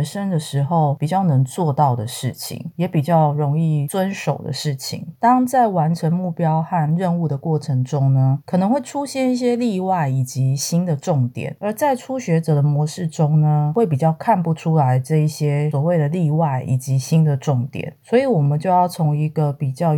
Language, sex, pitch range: Chinese, female, 145-180 Hz